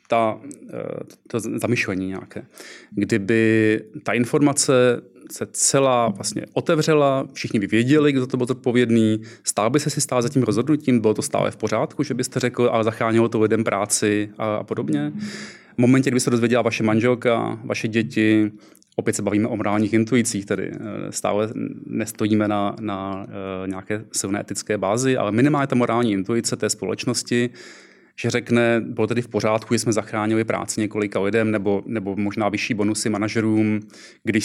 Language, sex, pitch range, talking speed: Czech, male, 105-120 Hz, 160 wpm